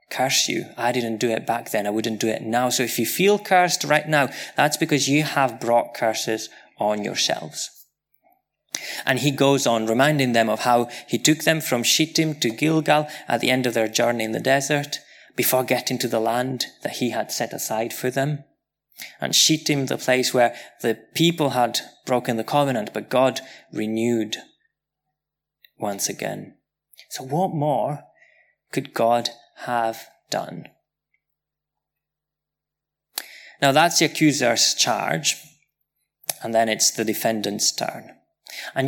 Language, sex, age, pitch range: English, male, 20-39, 115-150 Hz